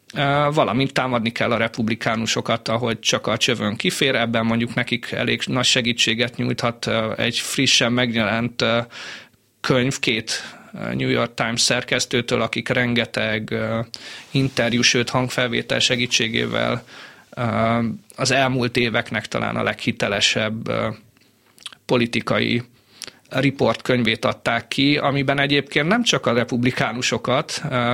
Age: 30-49